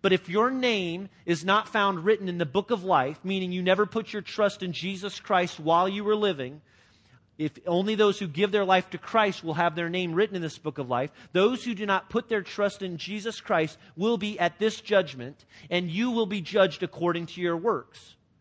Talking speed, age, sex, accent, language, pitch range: 225 wpm, 40-59, male, American, English, 160-200 Hz